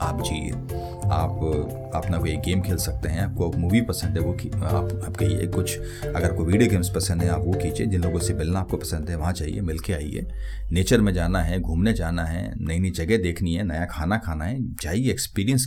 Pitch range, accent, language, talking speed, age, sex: 85-110 Hz, native, Hindi, 220 wpm, 30-49, male